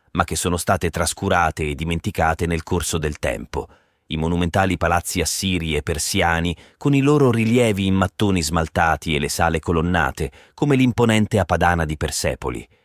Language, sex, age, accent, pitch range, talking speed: Italian, male, 30-49, native, 80-95 Hz, 155 wpm